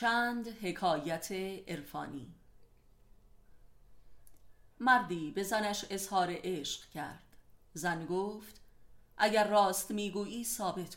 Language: Persian